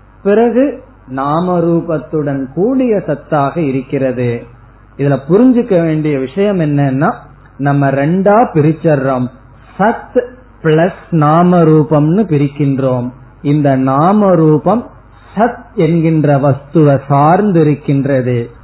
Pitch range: 130-165 Hz